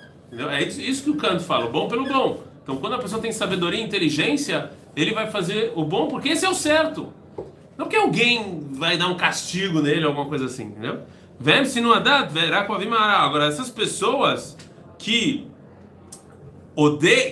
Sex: male